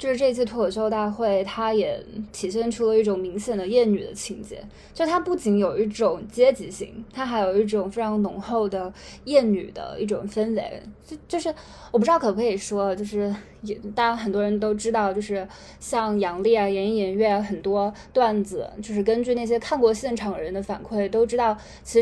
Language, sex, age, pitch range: Chinese, female, 20-39, 205-250 Hz